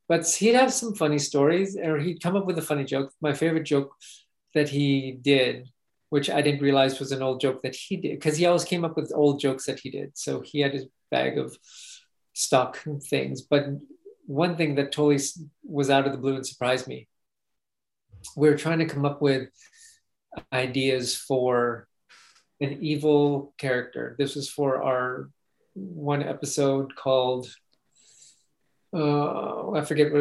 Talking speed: 175 wpm